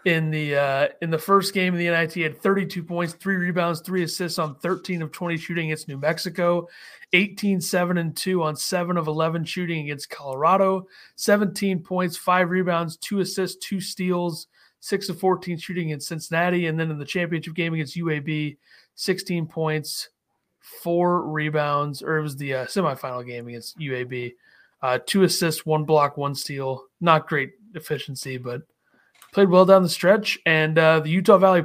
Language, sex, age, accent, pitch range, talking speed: English, male, 30-49, American, 150-185 Hz, 175 wpm